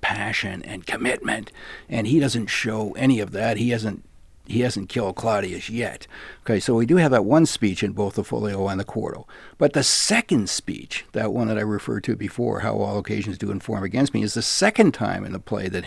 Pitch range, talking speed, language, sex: 105-135 Hz, 220 wpm, English, male